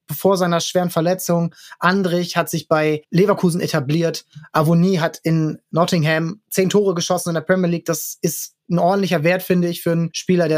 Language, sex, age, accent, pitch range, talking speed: German, male, 20-39, German, 155-180 Hz, 180 wpm